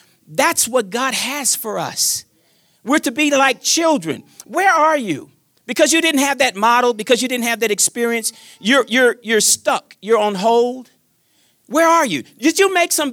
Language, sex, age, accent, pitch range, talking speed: English, male, 40-59, American, 225-320 Hz, 185 wpm